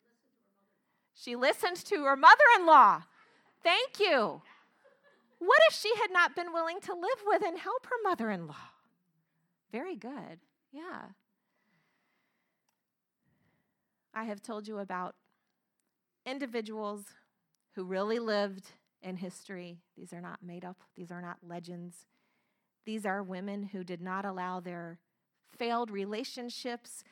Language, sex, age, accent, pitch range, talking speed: English, female, 30-49, American, 180-235 Hz, 120 wpm